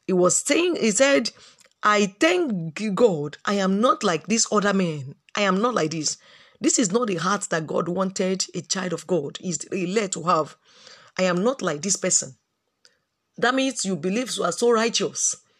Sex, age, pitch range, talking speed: female, 40-59, 180-250 Hz, 190 wpm